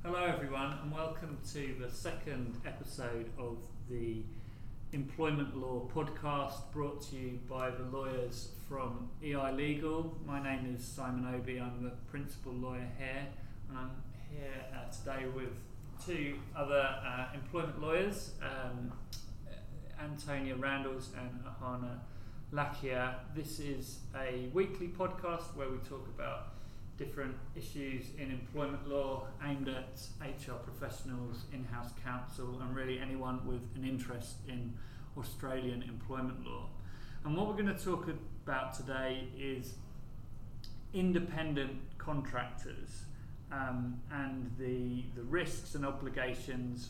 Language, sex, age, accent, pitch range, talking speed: English, male, 30-49, British, 120-140 Hz, 125 wpm